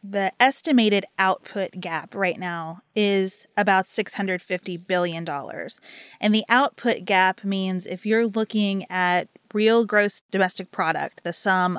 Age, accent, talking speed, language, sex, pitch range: 20-39, American, 125 wpm, English, female, 185-225 Hz